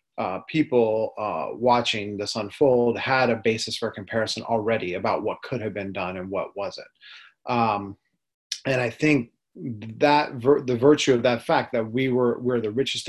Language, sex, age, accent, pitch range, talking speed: English, male, 30-49, American, 105-125 Hz, 175 wpm